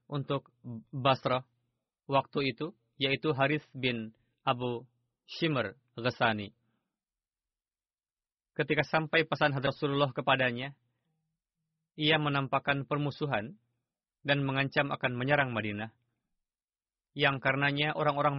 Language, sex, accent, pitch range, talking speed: Indonesian, male, native, 125-150 Hz, 85 wpm